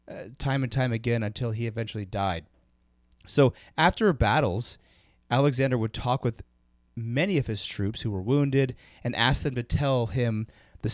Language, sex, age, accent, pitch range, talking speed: English, male, 30-49, American, 105-140 Hz, 165 wpm